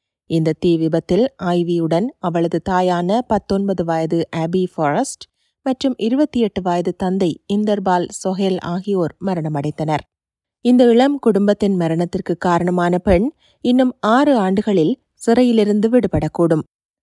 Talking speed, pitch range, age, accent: 110 wpm, 175-235 Hz, 30-49, native